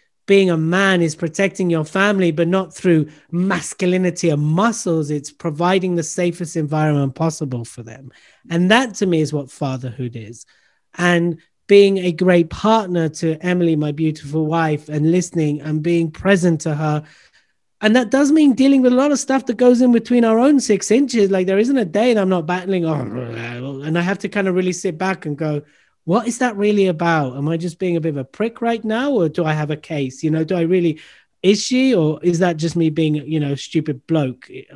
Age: 30-49